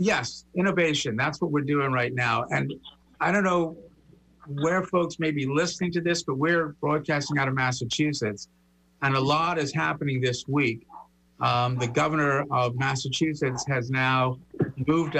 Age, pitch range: 50-69, 110-150 Hz